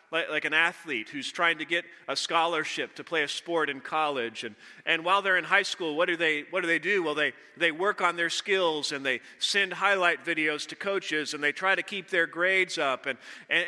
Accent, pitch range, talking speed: American, 155-195 Hz, 230 wpm